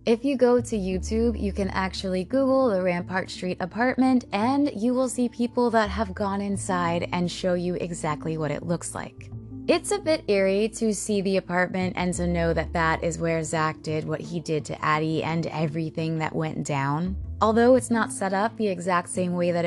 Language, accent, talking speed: English, American, 205 wpm